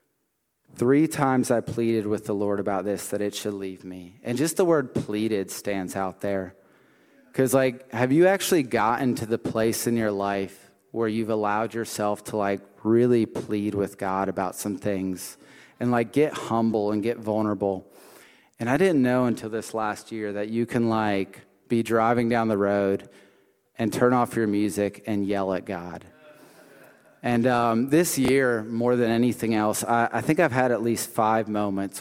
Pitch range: 100-120 Hz